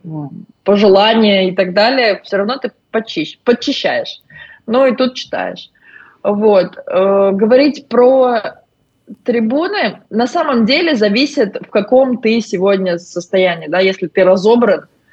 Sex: female